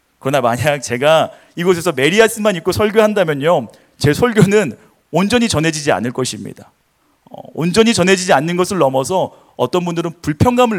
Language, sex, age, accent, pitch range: Korean, male, 30-49, native, 125-185 Hz